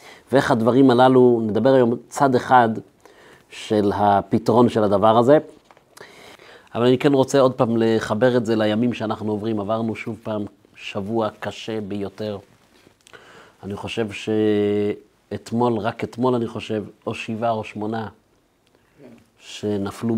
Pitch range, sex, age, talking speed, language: 105-120 Hz, male, 40-59, 125 wpm, Hebrew